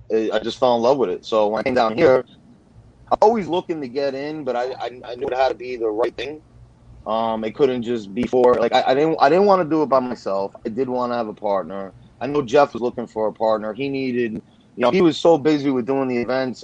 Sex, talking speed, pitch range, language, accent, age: male, 270 wpm, 110-130 Hz, English, American, 30-49